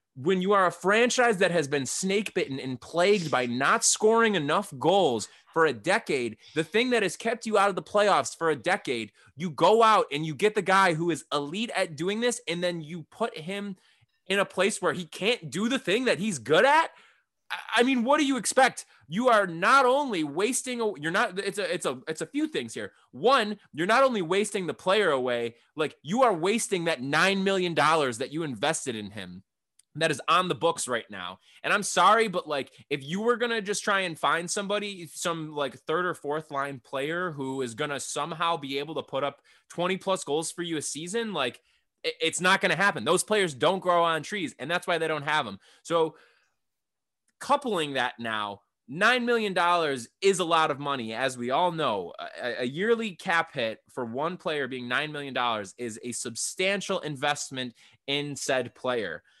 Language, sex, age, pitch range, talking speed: English, male, 20-39, 145-205 Hz, 205 wpm